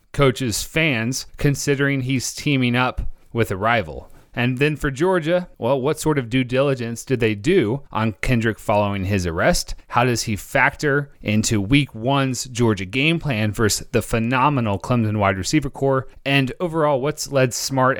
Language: English